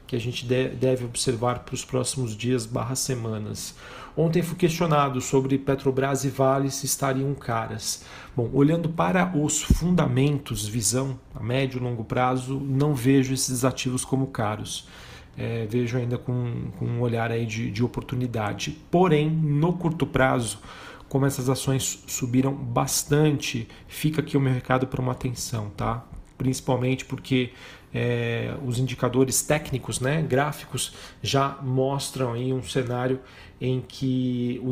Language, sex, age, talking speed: Portuguese, male, 40-59, 140 wpm